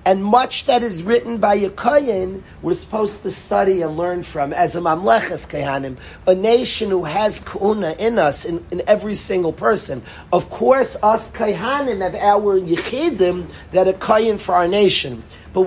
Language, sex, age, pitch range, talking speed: English, male, 40-59, 175-225 Hz, 170 wpm